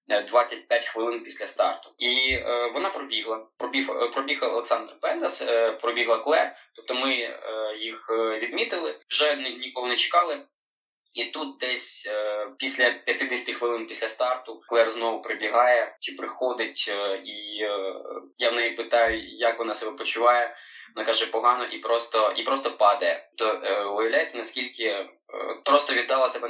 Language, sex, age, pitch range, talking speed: Ukrainian, male, 20-39, 110-125 Hz, 150 wpm